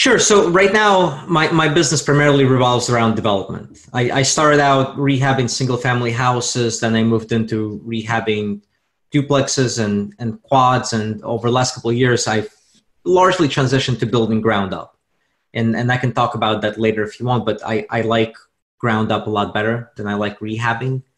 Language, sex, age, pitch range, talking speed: English, male, 30-49, 110-135 Hz, 185 wpm